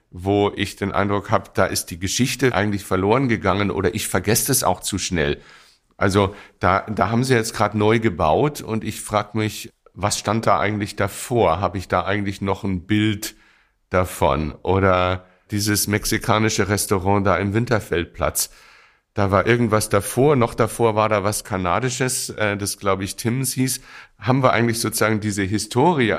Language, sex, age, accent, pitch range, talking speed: German, male, 60-79, German, 95-110 Hz, 165 wpm